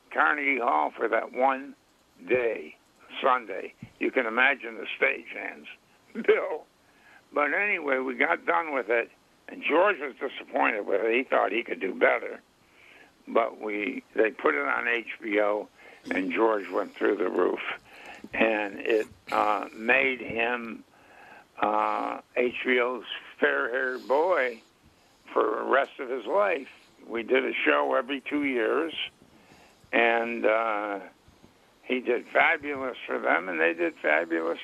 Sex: male